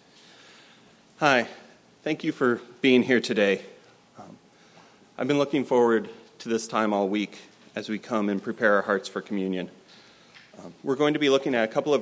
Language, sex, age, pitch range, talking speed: English, male, 30-49, 110-135 Hz, 180 wpm